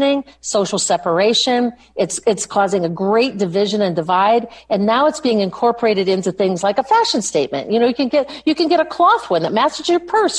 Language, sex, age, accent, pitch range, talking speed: English, female, 50-69, American, 180-240 Hz, 210 wpm